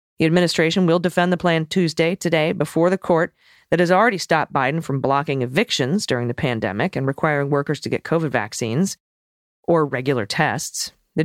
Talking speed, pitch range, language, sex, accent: 175 wpm, 140-170 Hz, English, female, American